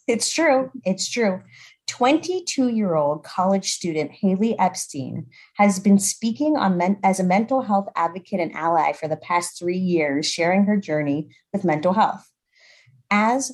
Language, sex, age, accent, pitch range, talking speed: English, female, 30-49, American, 160-200 Hz, 145 wpm